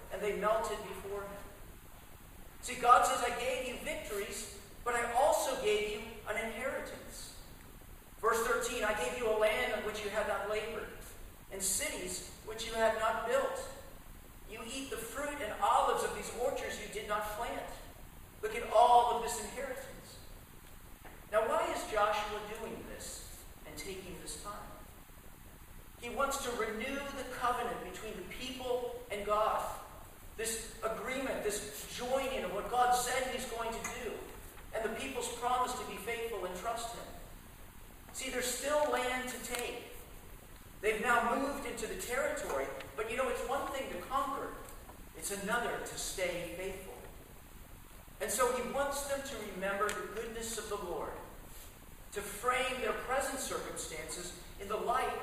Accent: American